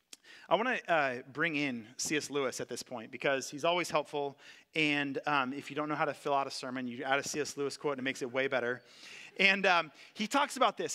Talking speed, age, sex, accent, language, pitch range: 245 wpm, 30-49, male, American, English, 145-195 Hz